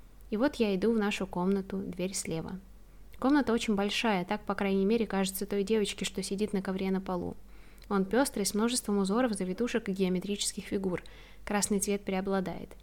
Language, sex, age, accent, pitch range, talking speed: Russian, female, 20-39, native, 195-230 Hz, 175 wpm